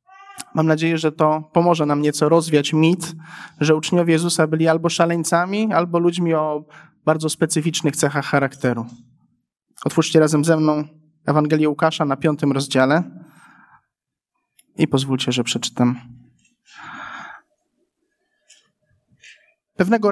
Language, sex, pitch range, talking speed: Polish, male, 150-185 Hz, 105 wpm